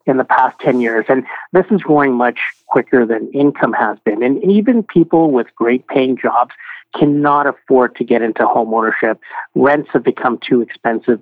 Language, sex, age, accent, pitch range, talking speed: English, male, 50-69, American, 125-150 Hz, 180 wpm